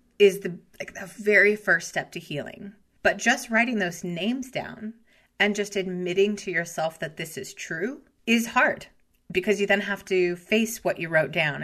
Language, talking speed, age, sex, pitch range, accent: English, 185 wpm, 30-49, female, 170-210 Hz, American